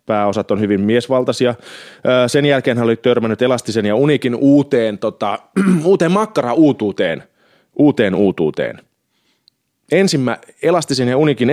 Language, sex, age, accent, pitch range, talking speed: Finnish, male, 20-39, native, 120-150 Hz, 115 wpm